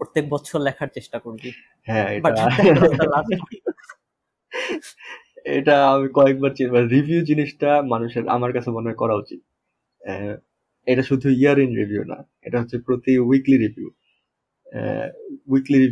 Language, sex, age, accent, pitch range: Bengali, male, 20-39, native, 110-135 Hz